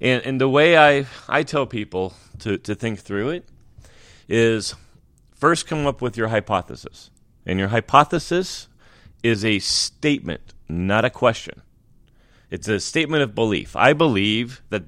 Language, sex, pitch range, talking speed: English, male, 105-145 Hz, 150 wpm